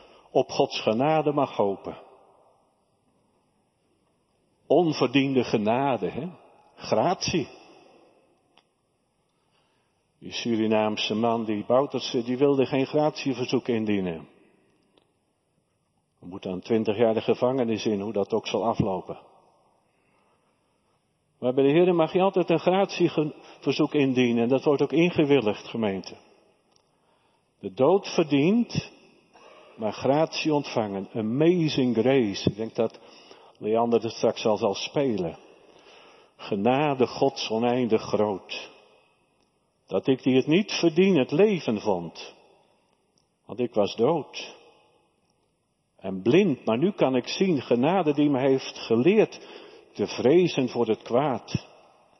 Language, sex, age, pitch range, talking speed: Dutch, male, 50-69, 110-160 Hz, 115 wpm